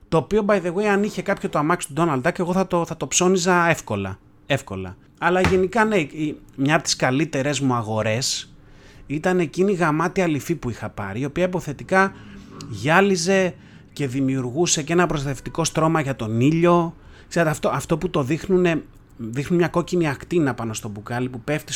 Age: 30-49